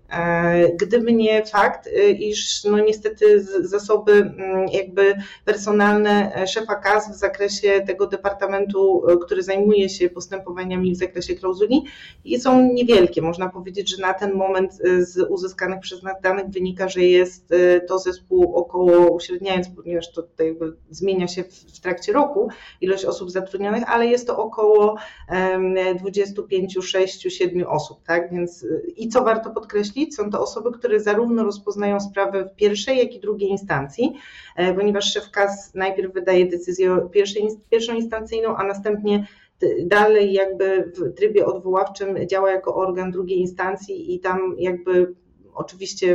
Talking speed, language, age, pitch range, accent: 140 wpm, Polish, 30-49, 180-210 Hz, native